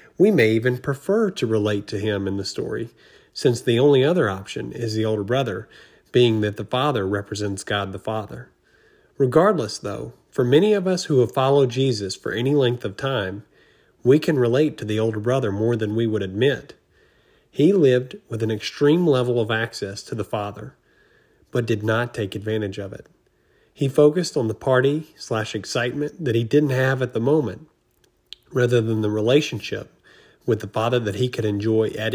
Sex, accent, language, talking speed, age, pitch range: male, American, English, 180 wpm, 40-59, 105-135 Hz